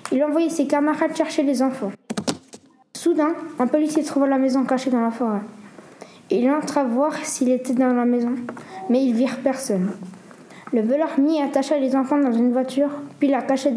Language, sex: French, female